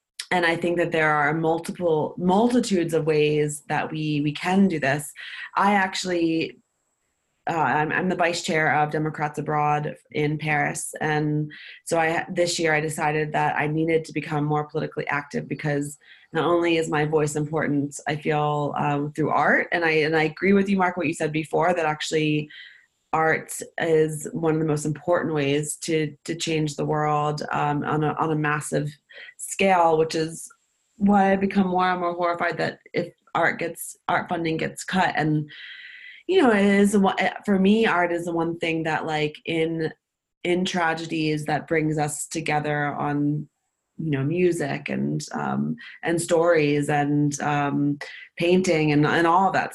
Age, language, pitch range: 20-39, English, 150-175 Hz